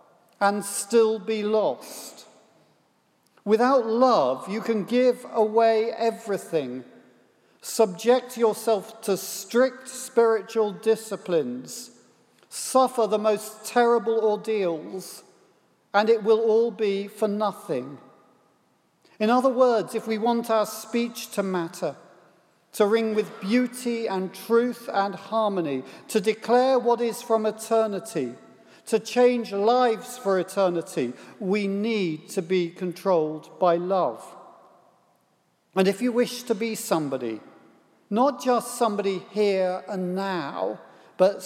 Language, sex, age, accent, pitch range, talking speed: English, male, 40-59, British, 190-230 Hz, 115 wpm